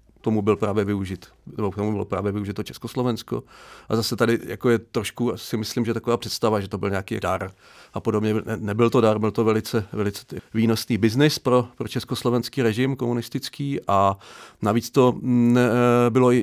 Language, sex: English, male